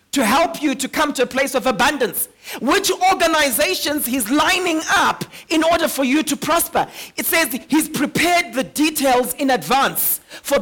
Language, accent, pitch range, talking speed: English, South African, 260-310 Hz, 170 wpm